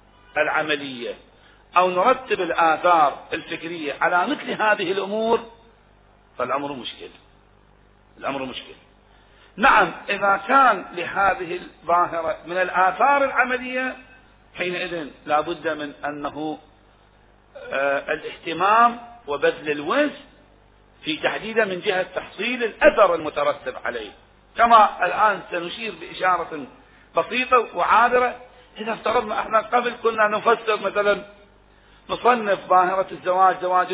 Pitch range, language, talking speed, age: 180-230 Hz, Arabic, 95 wpm, 40-59